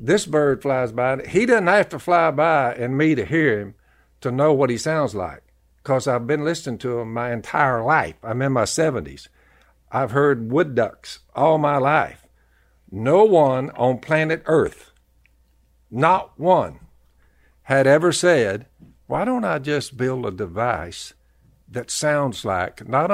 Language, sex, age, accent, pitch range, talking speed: English, male, 60-79, American, 105-150 Hz, 160 wpm